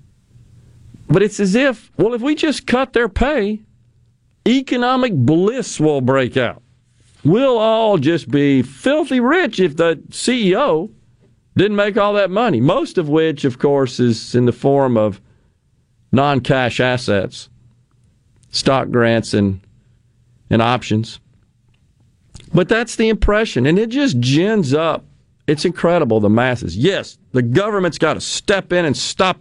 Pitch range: 120-160 Hz